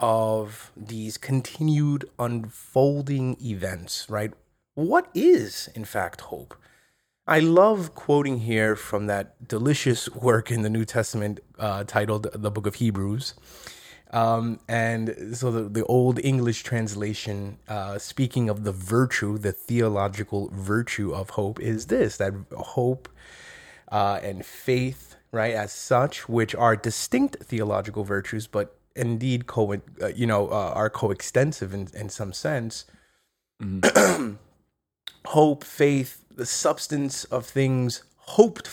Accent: American